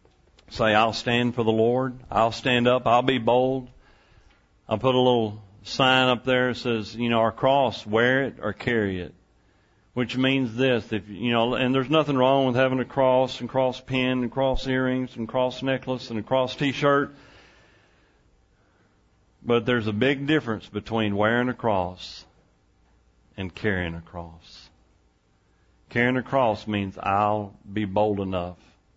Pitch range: 95-120 Hz